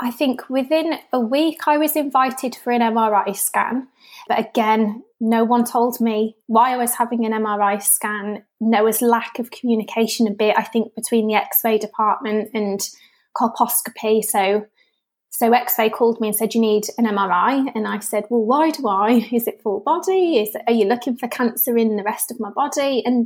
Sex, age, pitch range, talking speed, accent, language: female, 20-39, 215-245 Hz, 195 wpm, British, English